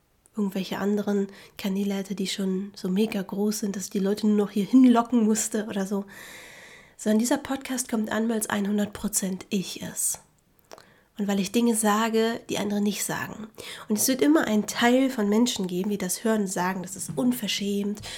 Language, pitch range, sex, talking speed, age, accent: German, 195-225 Hz, female, 190 wpm, 30-49, German